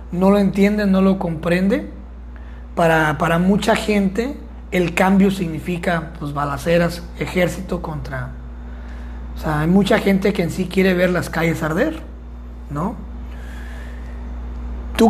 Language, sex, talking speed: Spanish, male, 125 wpm